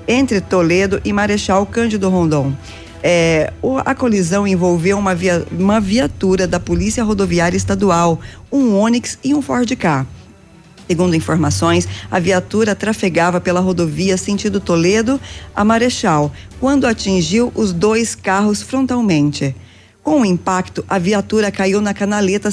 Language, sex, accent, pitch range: Portuguese, female, Brazilian, 160-205 Hz